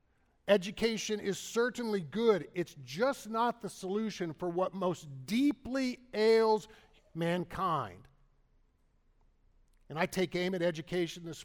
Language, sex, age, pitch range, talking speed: English, male, 50-69, 140-195 Hz, 115 wpm